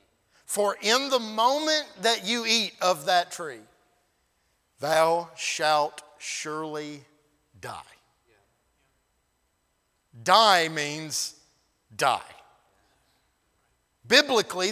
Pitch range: 205-260 Hz